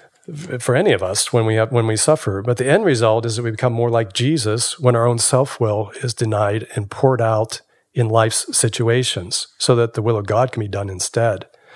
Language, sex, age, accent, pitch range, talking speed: English, male, 50-69, American, 105-125 Hz, 220 wpm